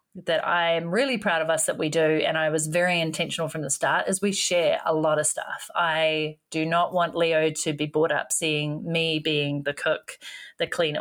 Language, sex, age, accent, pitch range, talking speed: English, female, 30-49, Australian, 160-195 Hz, 220 wpm